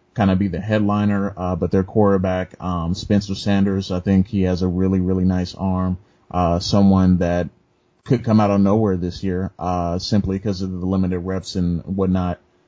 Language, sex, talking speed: English, male, 190 wpm